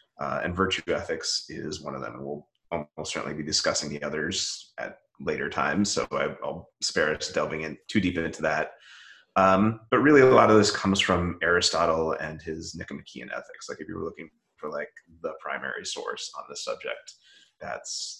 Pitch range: 80-100 Hz